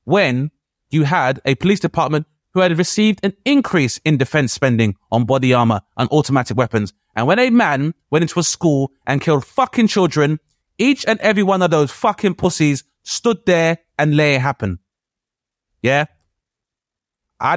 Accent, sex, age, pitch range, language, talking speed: British, male, 20-39, 135-185 Hz, English, 165 wpm